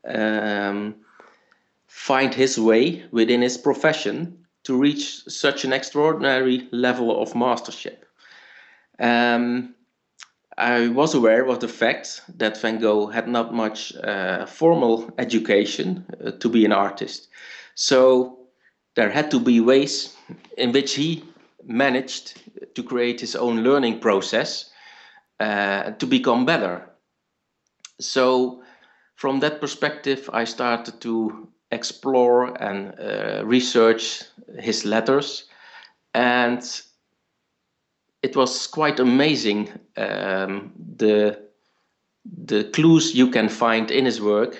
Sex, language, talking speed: male, English, 115 wpm